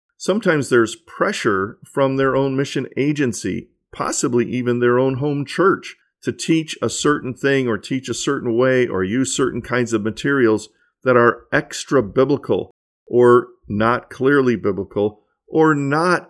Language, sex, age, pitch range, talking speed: English, male, 50-69, 115-140 Hz, 145 wpm